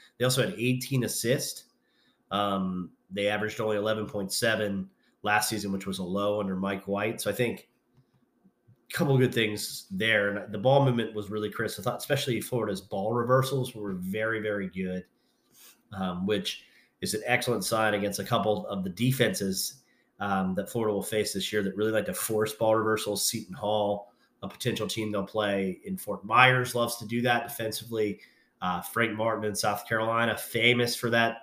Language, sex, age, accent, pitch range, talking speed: English, male, 30-49, American, 100-120 Hz, 180 wpm